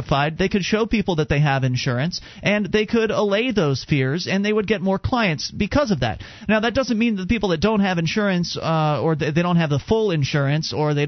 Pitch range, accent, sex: 150-210 Hz, American, male